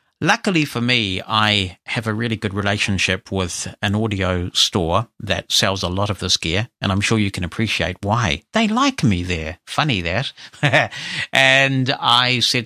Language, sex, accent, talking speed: English, male, British, 170 wpm